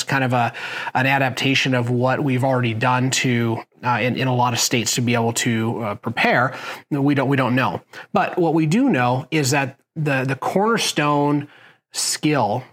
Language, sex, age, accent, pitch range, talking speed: English, male, 30-49, American, 125-150 Hz, 190 wpm